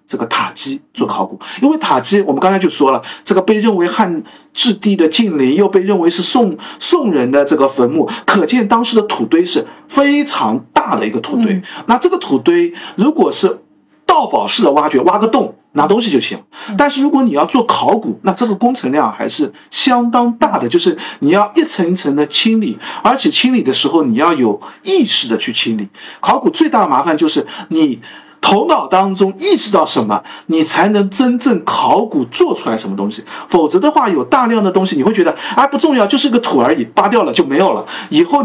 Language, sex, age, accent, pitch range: Chinese, male, 50-69, native, 195-295 Hz